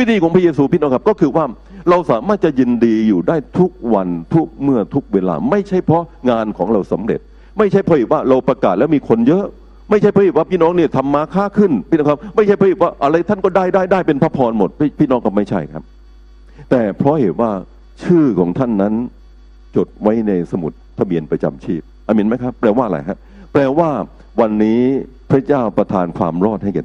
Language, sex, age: Thai, male, 60-79